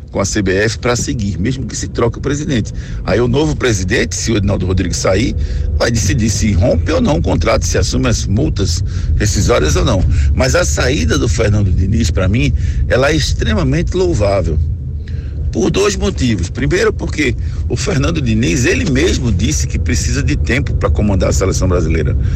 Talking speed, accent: 180 wpm, Brazilian